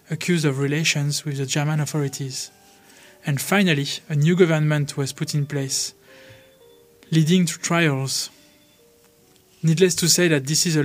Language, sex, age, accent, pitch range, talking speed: English, male, 20-39, French, 145-165 Hz, 145 wpm